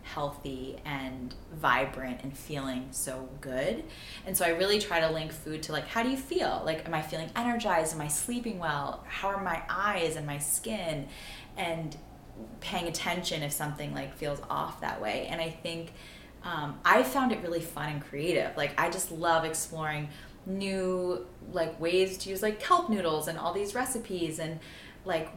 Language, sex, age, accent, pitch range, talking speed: English, female, 10-29, American, 150-190 Hz, 180 wpm